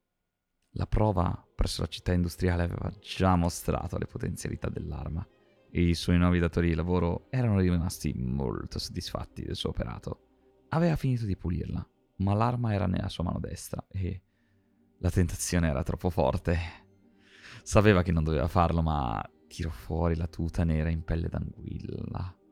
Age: 30-49